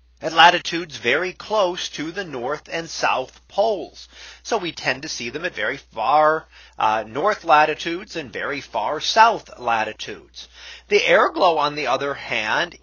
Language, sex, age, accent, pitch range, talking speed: English, male, 40-59, American, 135-185 Hz, 160 wpm